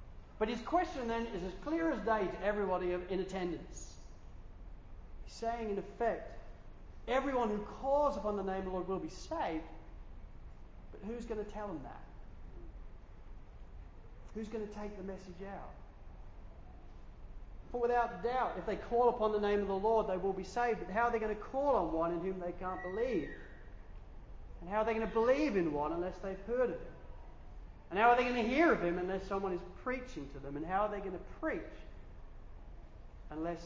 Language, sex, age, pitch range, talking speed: English, male, 40-59, 160-225 Hz, 195 wpm